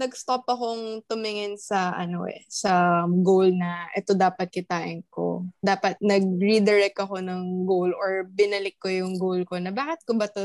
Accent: Filipino